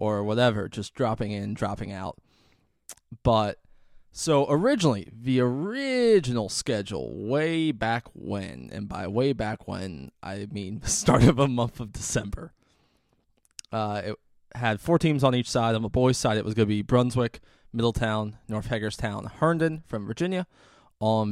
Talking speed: 155 wpm